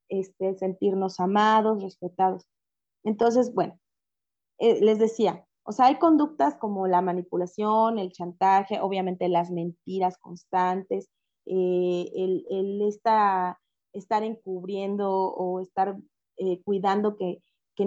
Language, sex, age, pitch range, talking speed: Spanish, female, 20-39, 190-220 Hz, 115 wpm